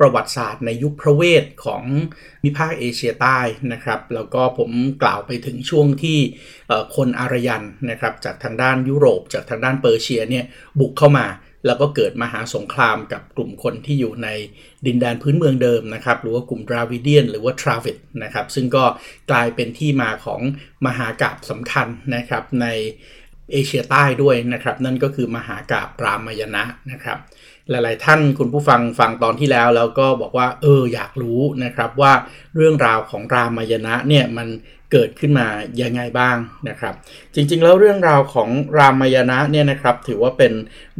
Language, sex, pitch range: Thai, male, 120-140 Hz